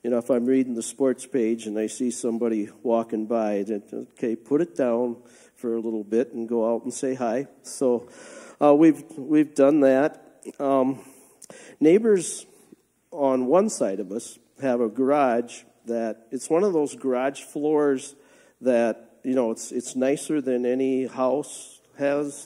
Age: 50-69